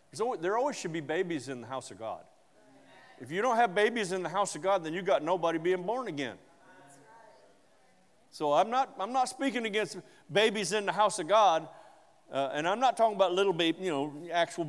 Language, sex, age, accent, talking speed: English, male, 50-69, American, 210 wpm